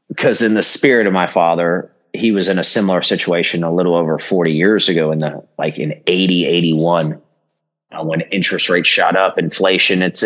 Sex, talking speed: male, 195 wpm